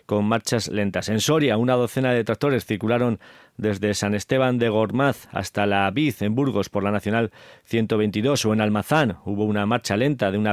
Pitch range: 105-125 Hz